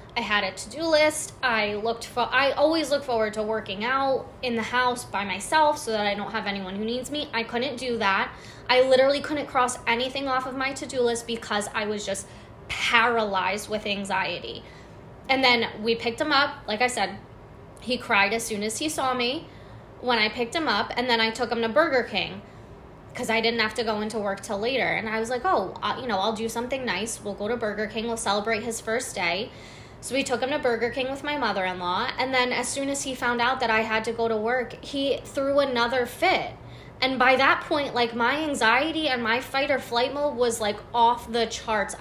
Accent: American